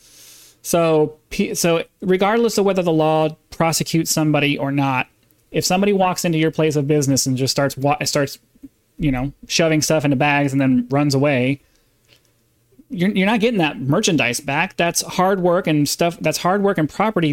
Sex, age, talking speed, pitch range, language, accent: male, 30-49, 175 wpm, 135-170 Hz, English, American